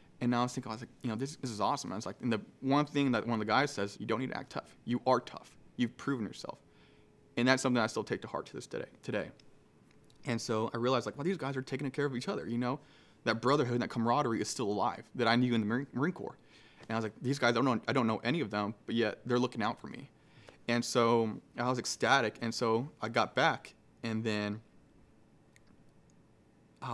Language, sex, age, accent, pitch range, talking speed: English, male, 20-39, American, 110-125 Hz, 265 wpm